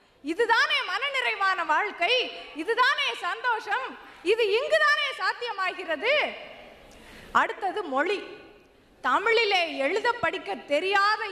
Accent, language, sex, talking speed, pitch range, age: native, Tamil, female, 70 wpm, 330-435 Hz, 20-39